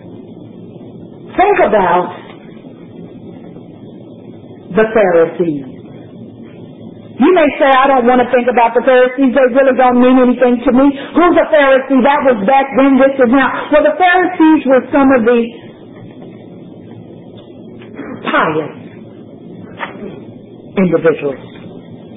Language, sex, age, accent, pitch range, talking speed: English, female, 50-69, American, 260-320 Hz, 110 wpm